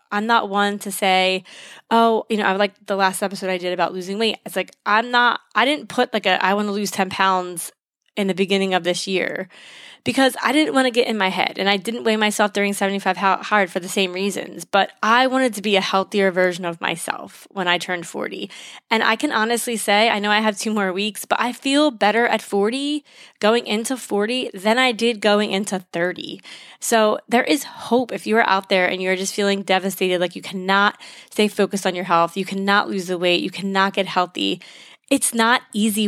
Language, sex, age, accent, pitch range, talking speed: English, female, 20-39, American, 190-225 Hz, 225 wpm